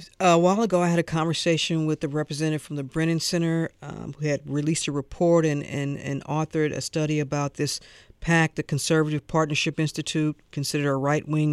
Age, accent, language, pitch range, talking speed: 50-69, American, English, 145-180 Hz, 185 wpm